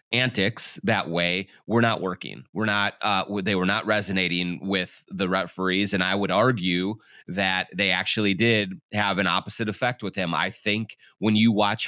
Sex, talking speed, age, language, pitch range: male, 180 wpm, 30-49, English, 95-115 Hz